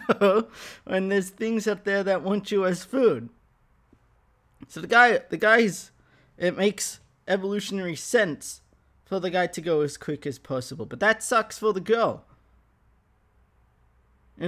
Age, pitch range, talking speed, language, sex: 20-39, 125-195 Hz, 145 wpm, English, male